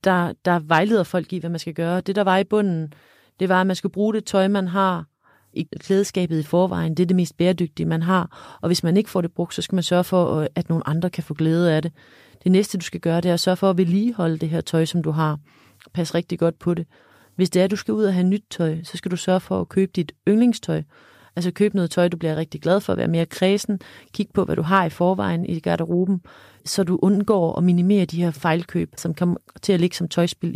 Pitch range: 160-185 Hz